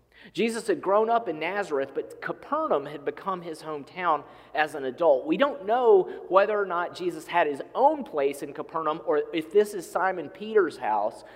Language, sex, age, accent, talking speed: English, male, 40-59, American, 185 wpm